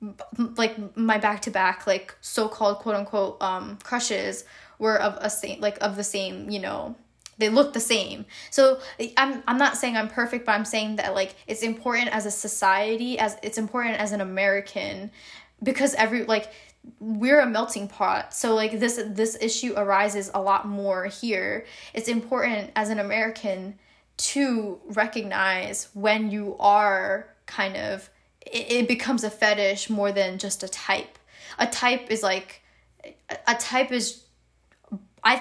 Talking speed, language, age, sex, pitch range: 155 wpm, English, 10-29, female, 200-230 Hz